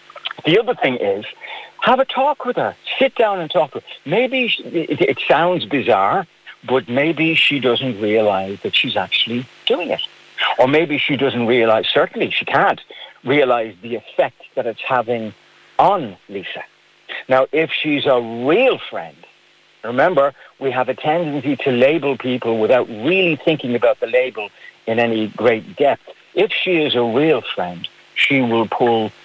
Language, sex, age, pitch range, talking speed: English, male, 60-79, 120-160 Hz, 160 wpm